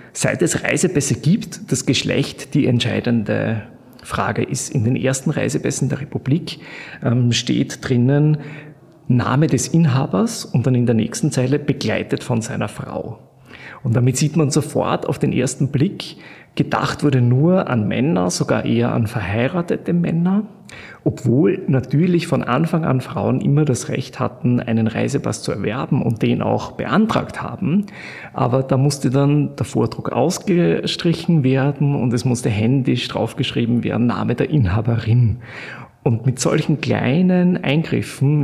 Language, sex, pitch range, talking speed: German, male, 120-150 Hz, 140 wpm